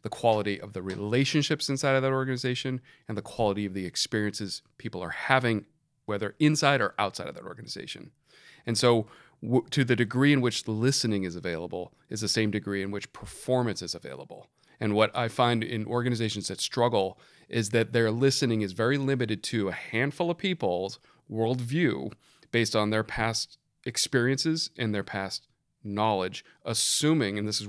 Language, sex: English, male